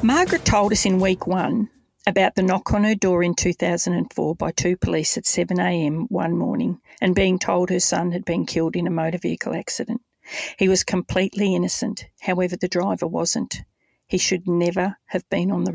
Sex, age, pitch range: female, 50-69, 175-200 Hz